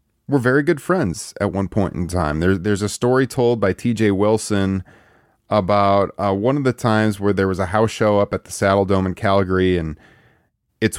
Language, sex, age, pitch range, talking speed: English, male, 30-49, 90-115 Hz, 210 wpm